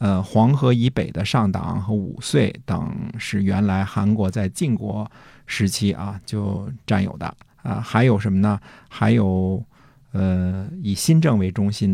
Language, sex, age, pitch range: Chinese, male, 50-69, 100-130 Hz